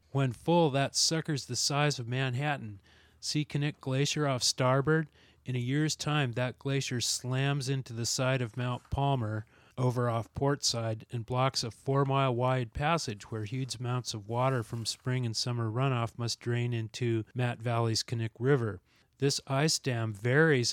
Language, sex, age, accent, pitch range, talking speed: English, male, 30-49, American, 115-135 Hz, 160 wpm